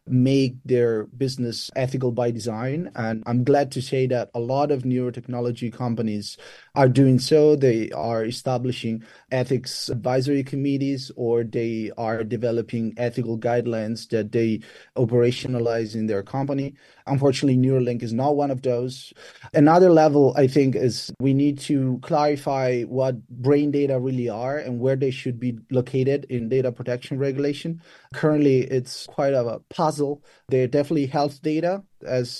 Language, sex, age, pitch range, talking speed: English, male, 30-49, 120-140 Hz, 145 wpm